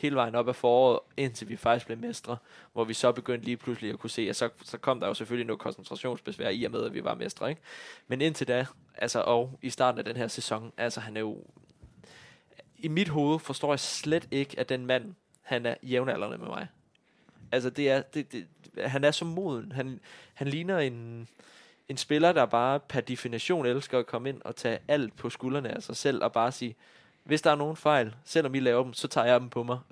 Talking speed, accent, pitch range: 230 wpm, native, 120-135 Hz